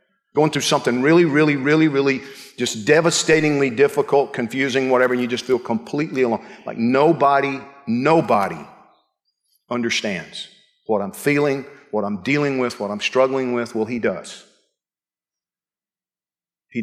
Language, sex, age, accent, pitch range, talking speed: English, male, 50-69, American, 135-175 Hz, 130 wpm